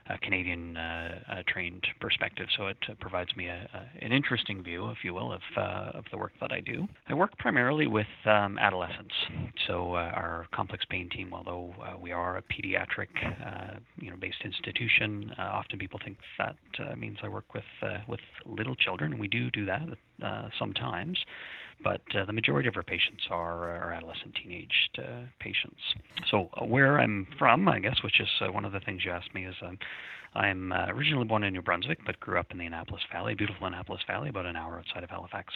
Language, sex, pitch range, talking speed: English, male, 90-105 Hz, 210 wpm